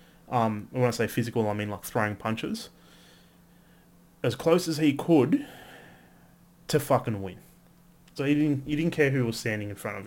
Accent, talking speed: Australian, 180 wpm